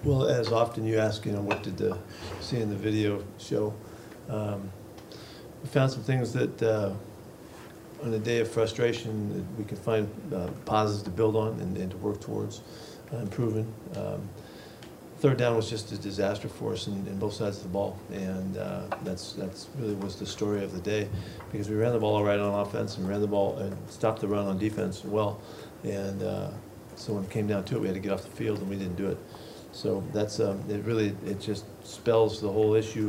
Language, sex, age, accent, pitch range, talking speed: English, male, 40-59, American, 100-110 Hz, 220 wpm